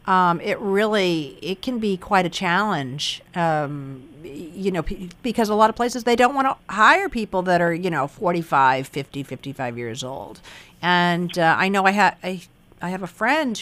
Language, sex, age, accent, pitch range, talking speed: English, female, 50-69, American, 160-205 Hz, 195 wpm